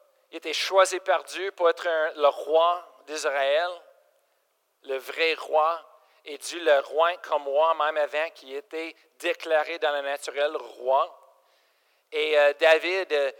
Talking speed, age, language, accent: 145 wpm, 50-69, French, Canadian